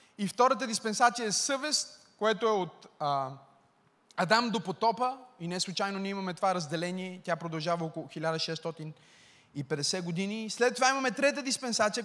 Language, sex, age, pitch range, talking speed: Bulgarian, male, 20-39, 195-265 Hz, 145 wpm